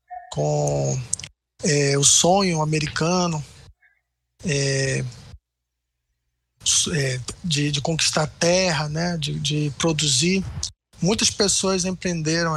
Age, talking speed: 20-39, 85 wpm